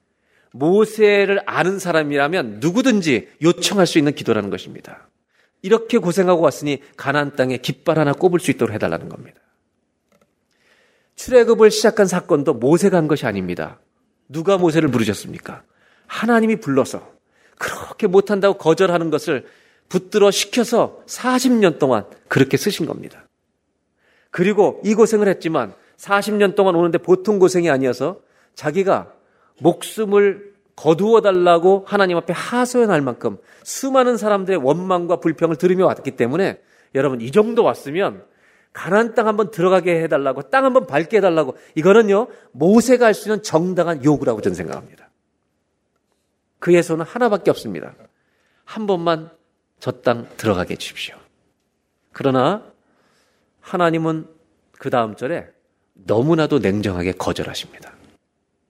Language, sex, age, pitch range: Korean, male, 40-59, 155-210 Hz